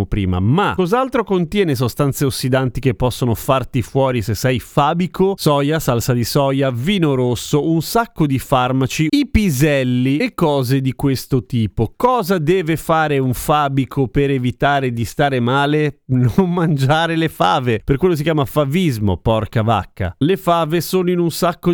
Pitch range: 125-170 Hz